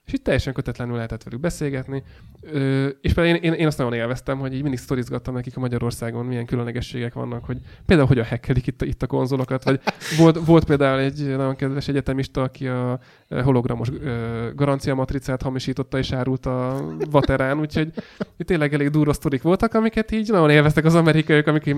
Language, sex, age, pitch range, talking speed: Hungarian, male, 20-39, 125-155 Hz, 175 wpm